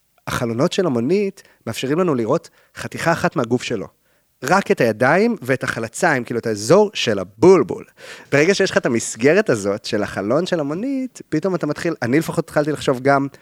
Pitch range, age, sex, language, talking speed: 115-160 Hz, 30-49, male, Hebrew, 170 wpm